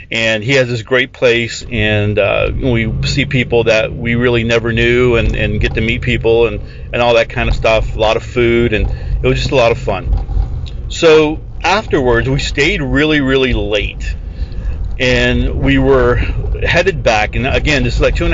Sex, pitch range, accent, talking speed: male, 105-140 Hz, American, 195 wpm